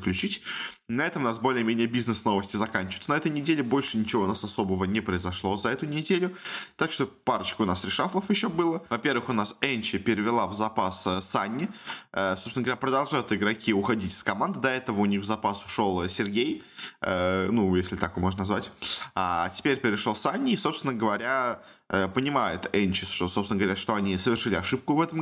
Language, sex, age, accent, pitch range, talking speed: Russian, male, 20-39, native, 95-130 Hz, 185 wpm